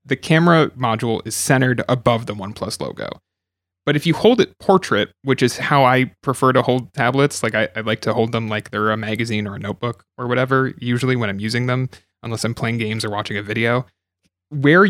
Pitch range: 110-150 Hz